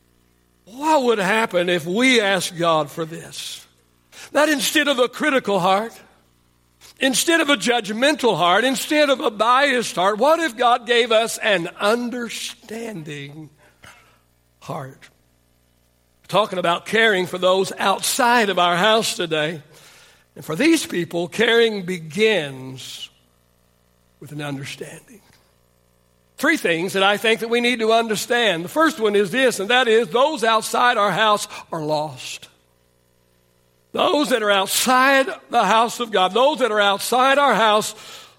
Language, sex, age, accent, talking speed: English, male, 60-79, American, 140 wpm